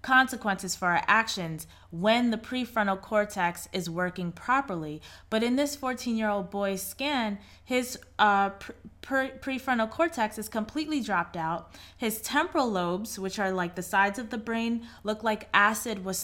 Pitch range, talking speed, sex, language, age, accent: 185-230 Hz, 150 wpm, female, English, 20-39, American